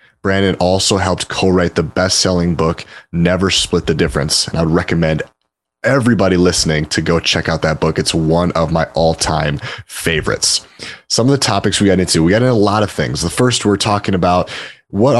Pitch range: 85-100 Hz